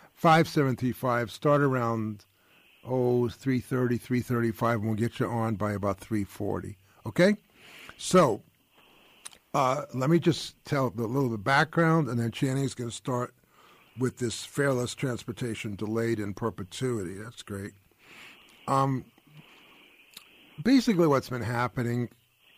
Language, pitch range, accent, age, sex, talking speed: English, 110-140 Hz, American, 50-69, male, 120 wpm